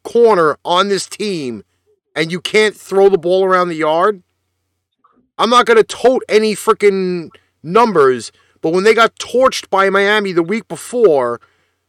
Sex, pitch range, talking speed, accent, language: male, 165-225 Hz, 155 wpm, American, English